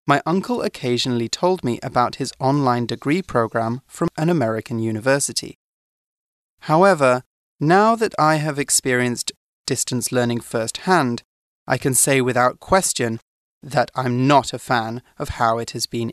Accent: British